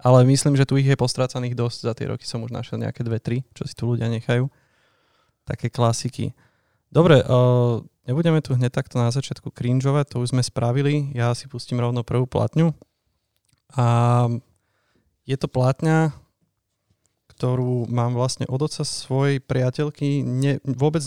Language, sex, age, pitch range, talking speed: Slovak, male, 30-49, 120-145 Hz, 160 wpm